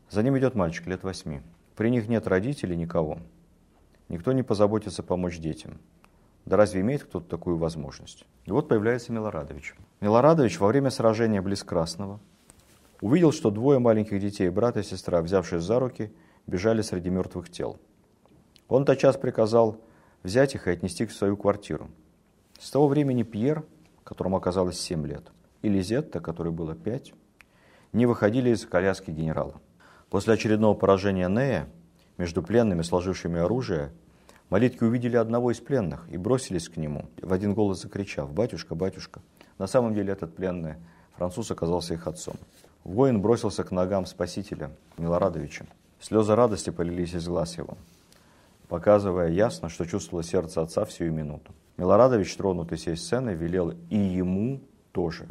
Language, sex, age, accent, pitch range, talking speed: Russian, male, 50-69, native, 85-110 Hz, 150 wpm